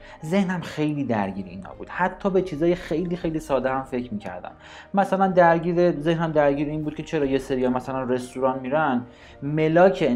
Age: 30-49